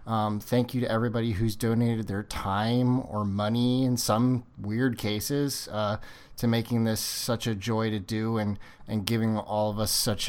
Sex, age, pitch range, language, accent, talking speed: male, 30-49, 105-125 Hz, English, American, 180 wpm